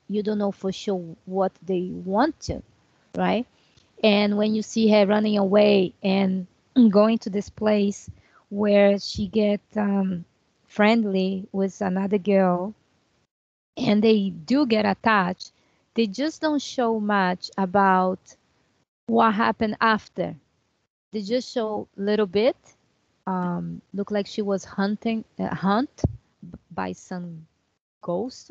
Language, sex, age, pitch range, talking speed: English, female, 20-39, 190-235 Hz, 130 wpm